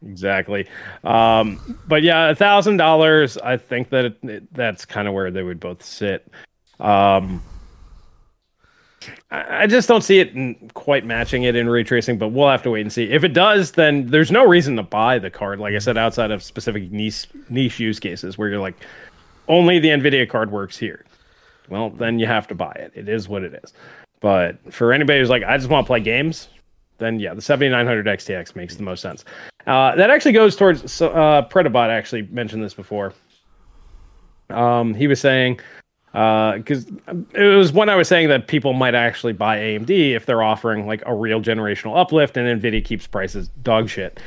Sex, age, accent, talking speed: male, 30-49, American, 190 wpm